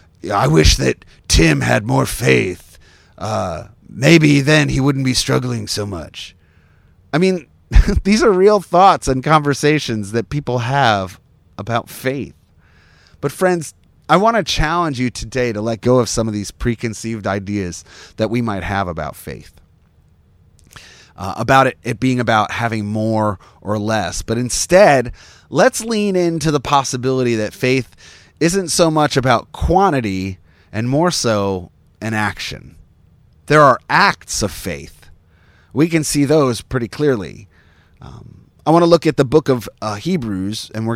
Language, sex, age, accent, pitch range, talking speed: English, male, 30-49, American, 95-140 Hz, 155 wpm